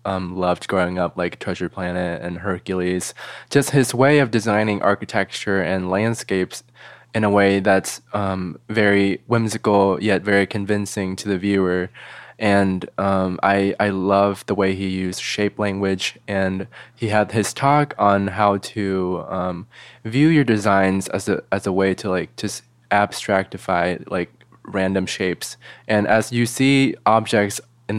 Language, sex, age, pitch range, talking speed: English, male, 20-39, 95-110 Hz, 150 wpm